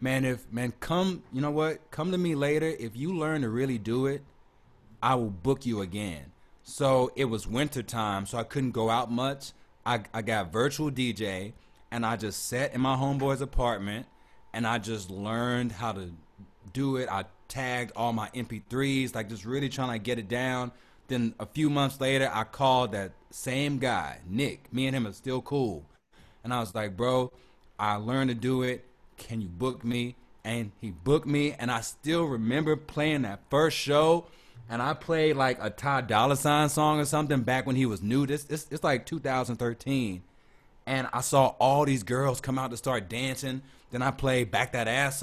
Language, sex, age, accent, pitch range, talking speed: English, male, 30-49, American, 115-140 Hz, 200 wpm